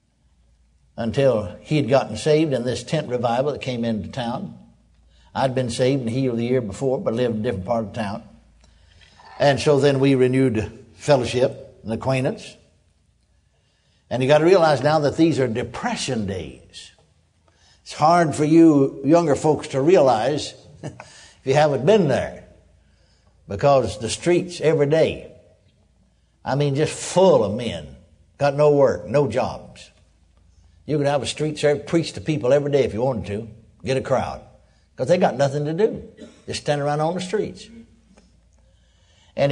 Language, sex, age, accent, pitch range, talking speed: English, male, 60-79, American, 100-150 Hz, 165 wpm